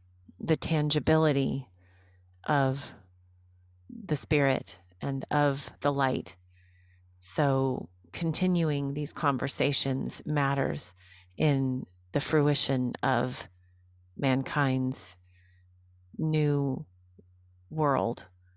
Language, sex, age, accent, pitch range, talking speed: English, female, 30-49, American, 90-145 Hz, 70 wpm